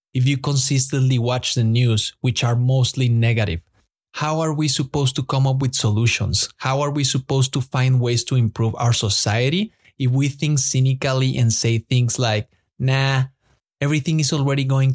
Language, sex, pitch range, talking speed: English, male, 115-140 Hz, 175 wpm